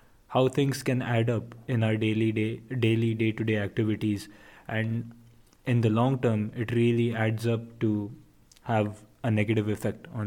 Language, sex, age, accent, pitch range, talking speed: English, male, 20-39, Indian, 110-120 Hz, 170 wpm